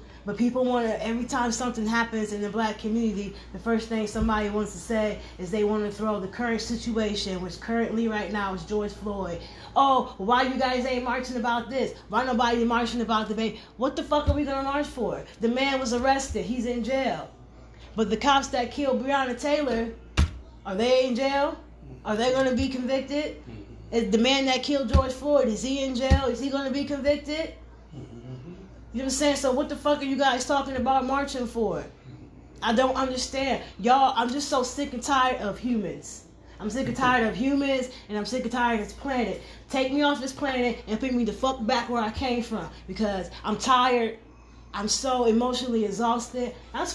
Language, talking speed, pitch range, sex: English, 200 wpm, 225-270 Hz, female